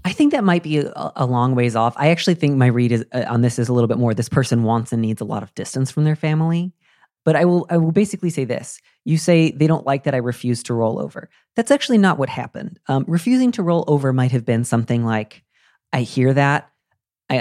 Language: English